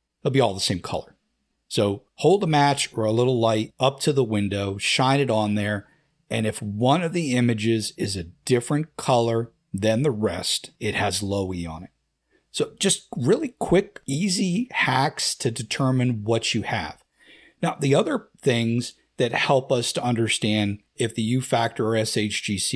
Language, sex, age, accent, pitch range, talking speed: English, male, 50-69, American, 105-135 Hz, 180 wpm